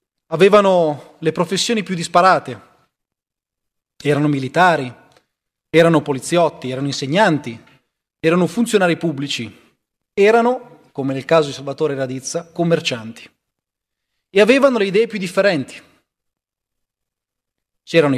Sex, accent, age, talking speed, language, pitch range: male, native, 30-49, 95 wpm, Italian, 145-195 Hz